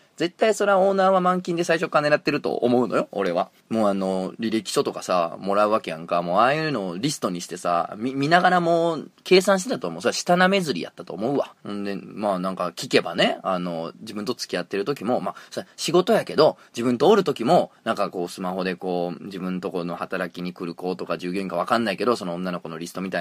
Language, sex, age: Japanese, male, 20-39